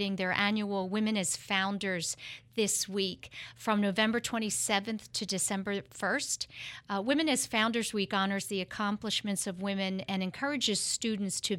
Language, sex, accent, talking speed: English, female, American, 140 wpm